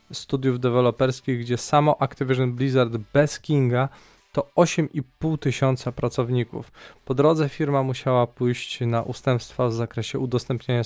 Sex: male